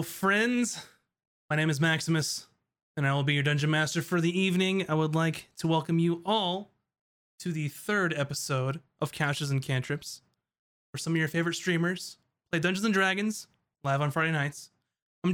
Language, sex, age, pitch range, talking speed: English, male, 20-39, 145-180 Hz, 175 wpm